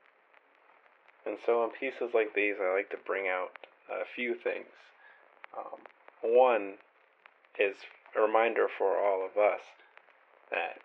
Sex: male